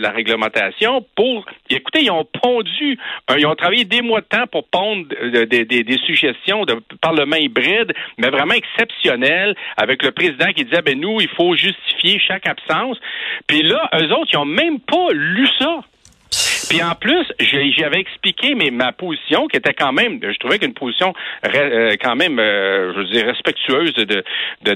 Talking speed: 185 wpm